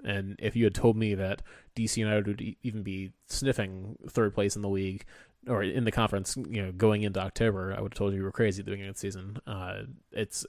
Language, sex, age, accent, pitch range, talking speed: English, male, 20-39, American, 100-110 Hz, 250 wpm